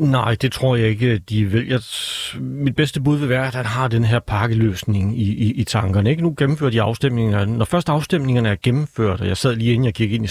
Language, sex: Danish, male